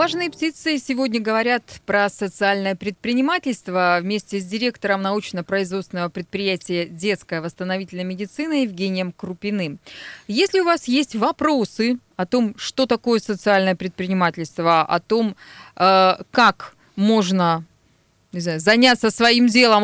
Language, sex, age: Russian, female, 20-39